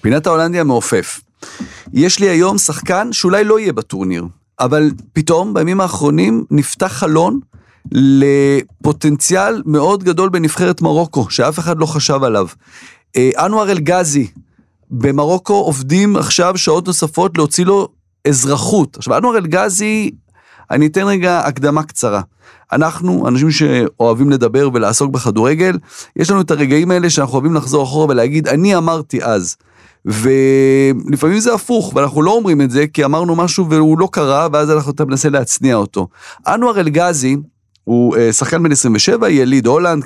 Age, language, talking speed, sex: 40-59, Hebrew, 140 wpm, male